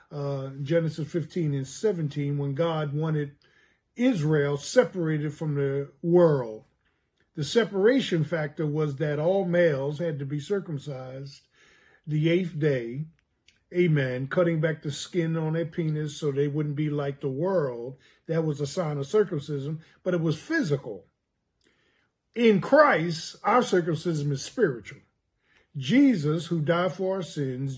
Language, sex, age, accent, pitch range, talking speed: English, male, 50-69, American, 145-180 Hz, 140 wpm